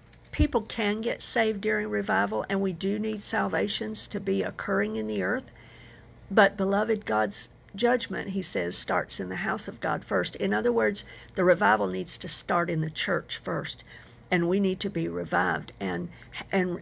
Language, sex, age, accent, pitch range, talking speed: English, female, 50-69, American, 165-215 Hz, 180 wpm